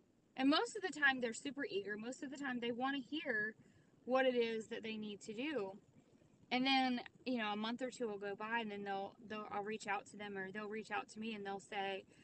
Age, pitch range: 20-39, 210-270 Hz